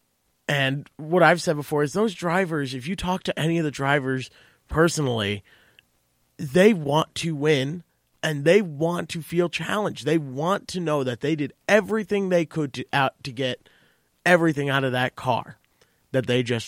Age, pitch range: 30-49, 125-160 Hz